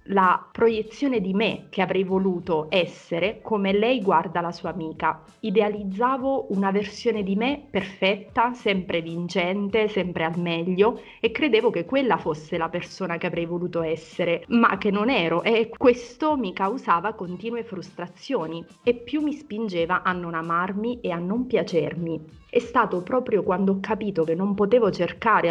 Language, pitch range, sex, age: Italian, 170-225 Hz, female, 30-49